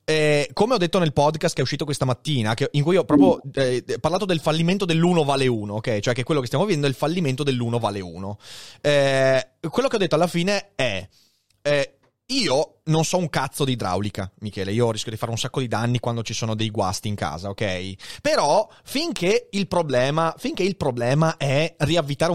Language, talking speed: Italian, 210 wpm